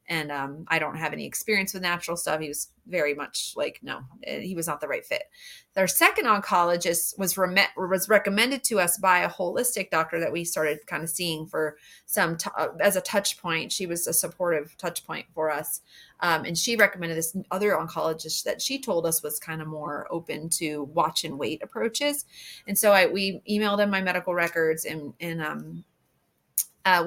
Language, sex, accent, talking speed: English, female, American, 200 wpm